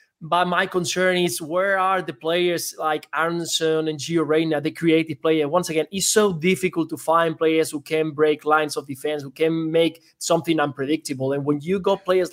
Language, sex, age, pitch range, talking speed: English, male, 20-39, 155-180 Hz, 195 wpm